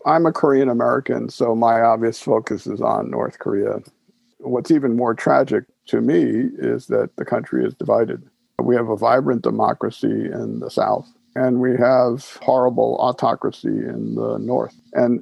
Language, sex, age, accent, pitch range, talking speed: English, male, 50-69, American, 125-160 Hz, 160 wpm